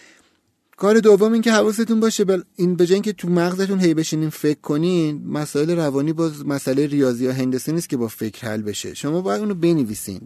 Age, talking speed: 30-49, 185 wpm